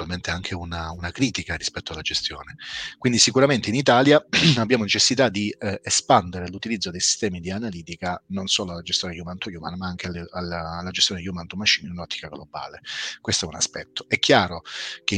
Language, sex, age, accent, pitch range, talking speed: Italian, male, 30-49, native, 90-105 Hz, 185 wpm